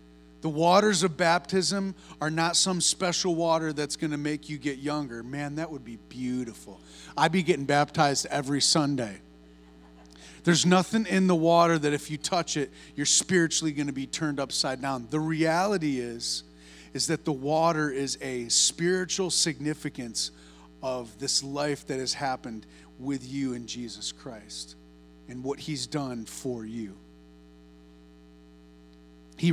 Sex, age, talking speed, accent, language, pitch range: male, 30-49, 150 wpm, American, English, 105-155 Hz